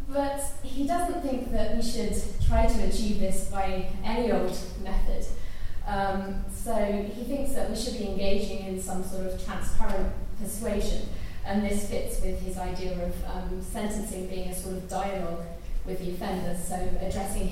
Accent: British